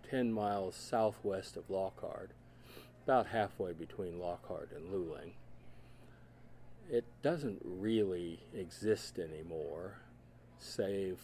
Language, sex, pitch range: English, male, 85-115 Hz